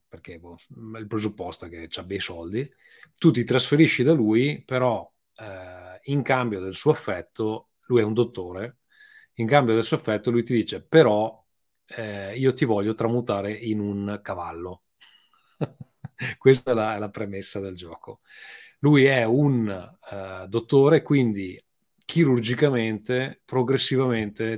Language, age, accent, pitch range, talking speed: Italian, 30-49, native, 100-130 Hz, 135 wpm